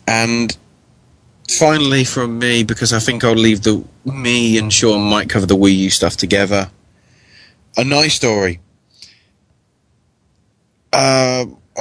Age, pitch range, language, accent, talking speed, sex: 20-39, 100-120 Hz, English, British, 120 wpm, male